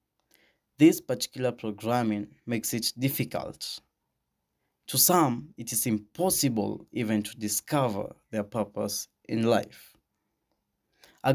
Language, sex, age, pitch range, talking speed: English, male, 20-39, 105-120 Hz, 100 wpm